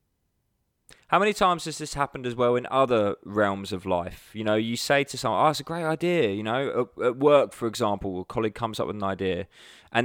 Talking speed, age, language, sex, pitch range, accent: 225 wpm, 20-39, English, male, 100-130 Hz, British